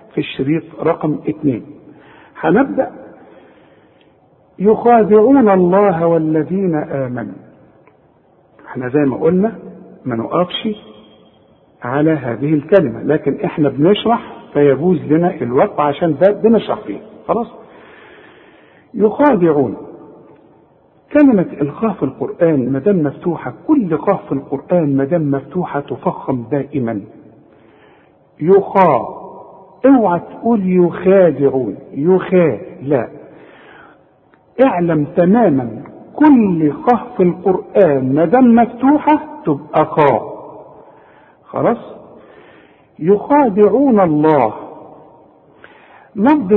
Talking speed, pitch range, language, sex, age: 75 wpm, 145-210 Hz, Arabic, male, 50-69